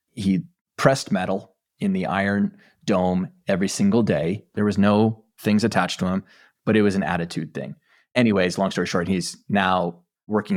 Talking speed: 170 wpm